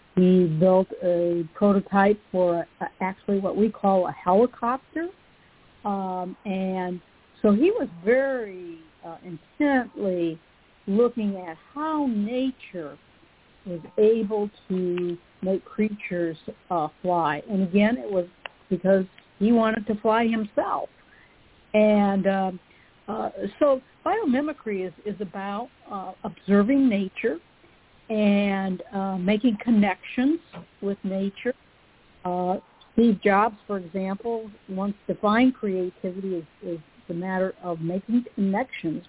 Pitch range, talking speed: 185-230 Hz, 110 wpm